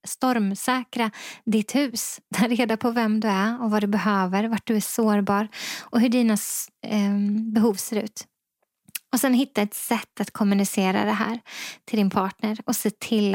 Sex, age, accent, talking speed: female, 20-39, native, 175 wpm